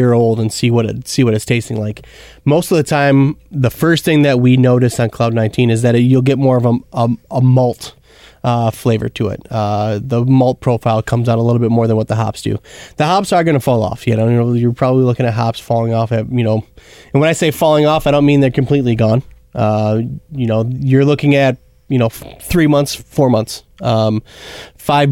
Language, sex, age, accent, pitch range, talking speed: English, male, 20-39, American, 115-140 Hz, 235 wpm